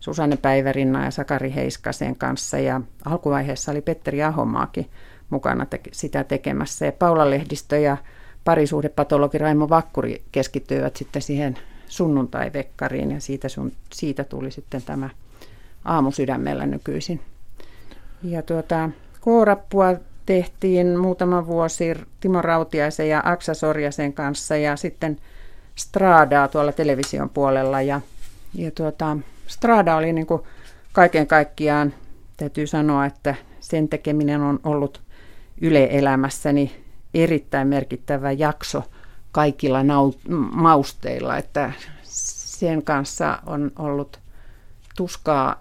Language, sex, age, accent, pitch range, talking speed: Finnish, female, 40-59, native, 135-165 Hz, 105 wpm